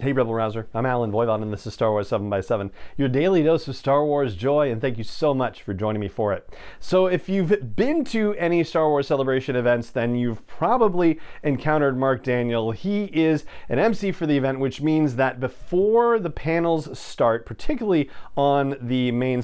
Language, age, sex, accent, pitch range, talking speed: English, 40-59, male, American, 120-155 Hz, 195 wpm